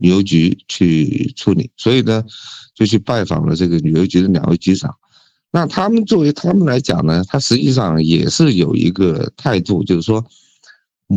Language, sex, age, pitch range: Chinese, male, 50-69, 90-120 Hz